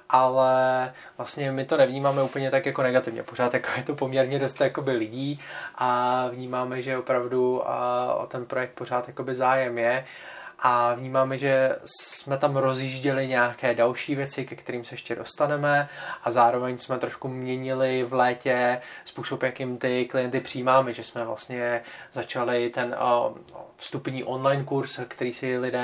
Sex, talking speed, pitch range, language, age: male, 145 wpm, 125-135 Hz, Czech, 20-39